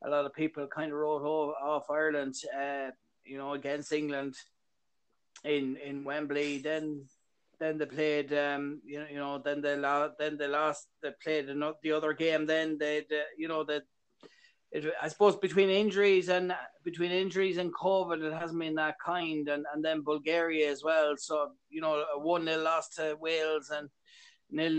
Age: 30-49